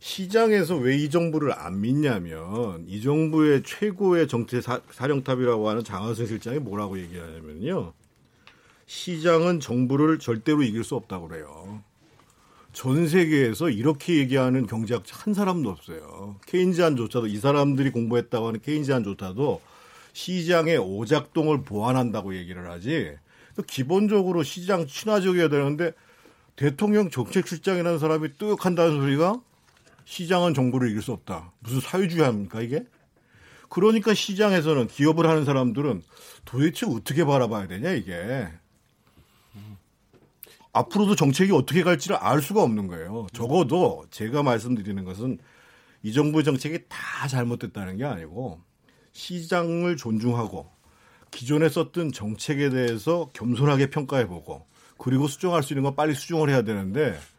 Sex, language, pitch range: male, Korean, 115-165 Hz